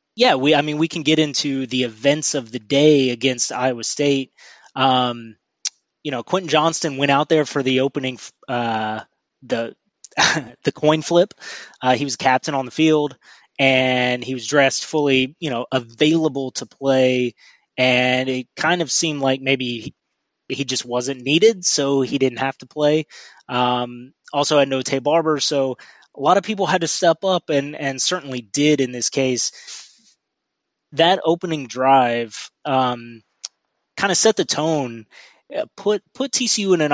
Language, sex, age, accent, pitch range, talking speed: English, male, 20-39, American, 130-155 Hz, 165 wpm